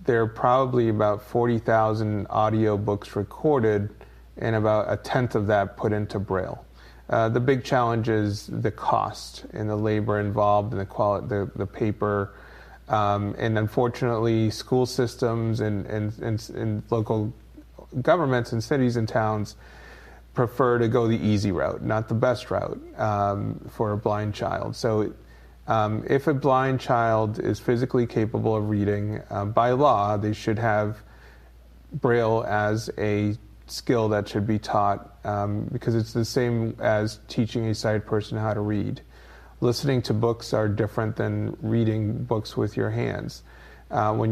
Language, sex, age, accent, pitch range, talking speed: English, male, 30-49, American, 105-115 Hz, 155 wpm